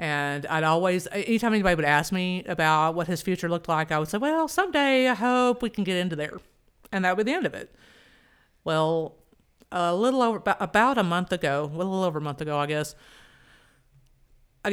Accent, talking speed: American, 210 wpm